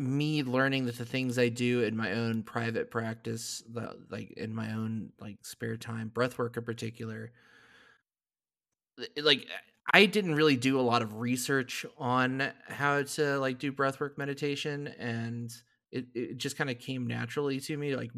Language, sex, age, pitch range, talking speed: English, male, 20-39, 115-135 Hz, 160 wpm